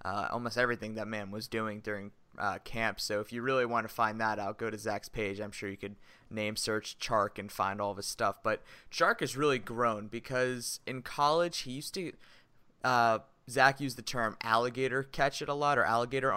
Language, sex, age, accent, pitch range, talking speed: English, male, 20-39, American, 110-130 Hz, 215 wpm